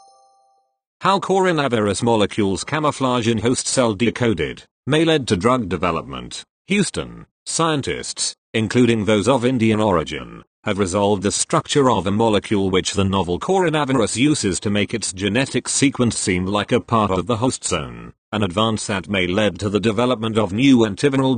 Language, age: English, 40-59